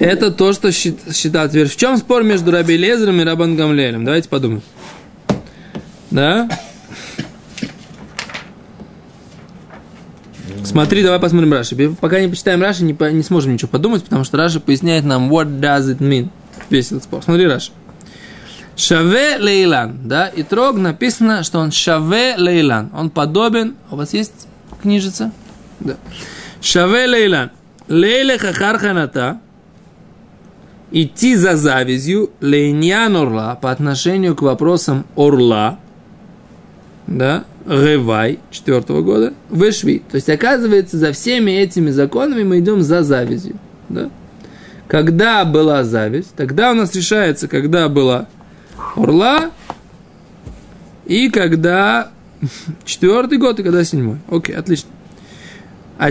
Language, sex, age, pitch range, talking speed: Russian, male, 20-39, 150-200 Hz, 120 wpm